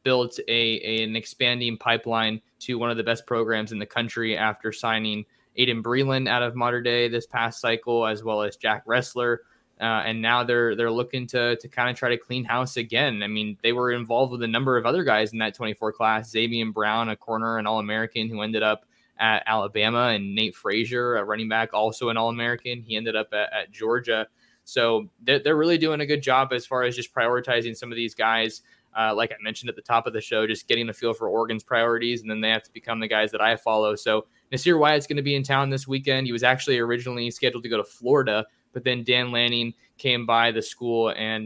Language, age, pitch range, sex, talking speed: English, 20-39, 110-125 Hz, male, 235 wpm